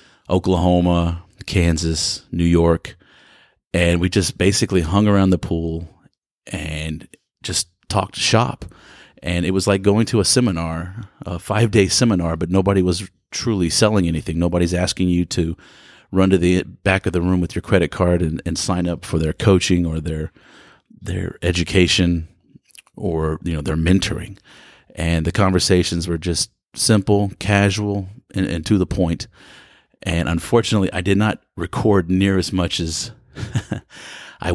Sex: male